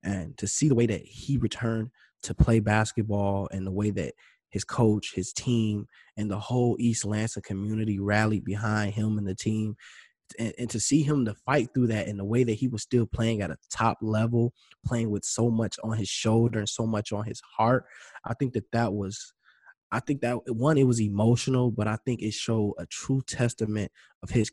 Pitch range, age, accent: 100-115 Hz, 20-39, American